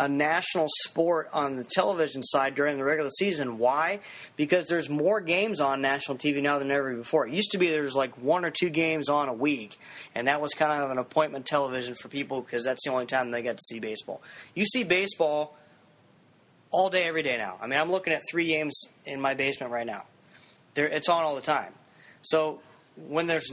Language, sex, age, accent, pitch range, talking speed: English, male, 20-39, American, 135-170 Hz, 215 wpm